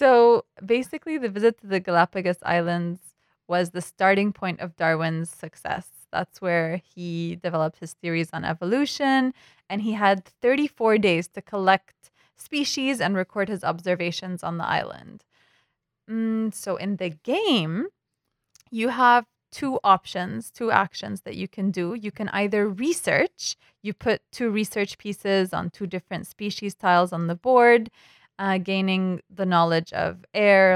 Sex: female